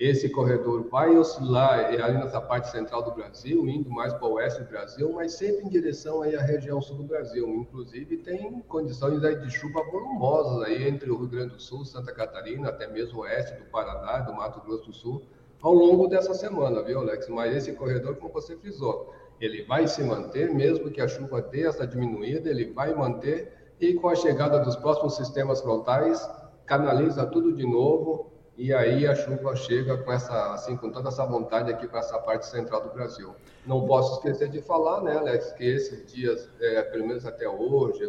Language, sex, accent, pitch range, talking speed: Portuguese, male, Brazilian, 120-170 Hz, 195 wpm